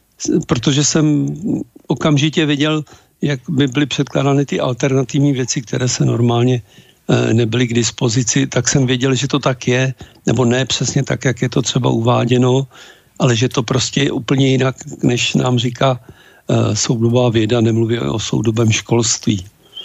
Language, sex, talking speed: Slovak, male, 150 wpm